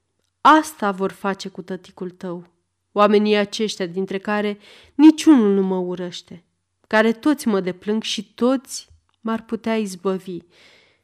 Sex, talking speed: female, 125 wpm